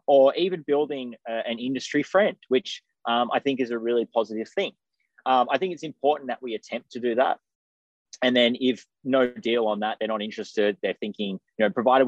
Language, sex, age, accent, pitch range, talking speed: English, male, 20-39, Australian, 95-135 Hz, 205 wpm